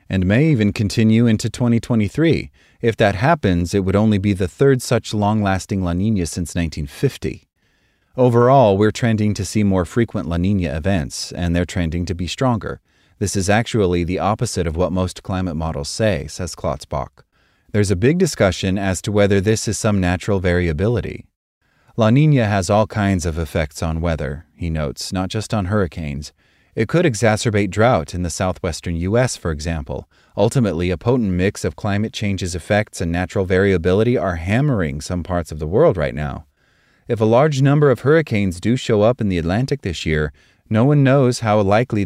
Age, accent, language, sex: 30-49, American, English, male